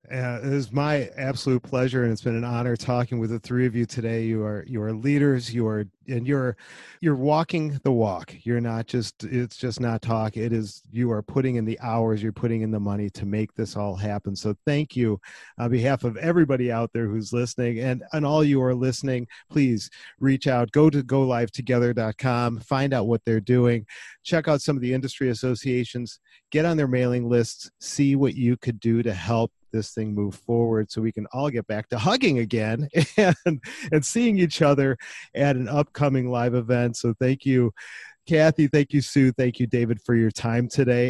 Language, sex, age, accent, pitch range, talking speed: English, male, 40-59, American, 115-140 Hz, 205 wpm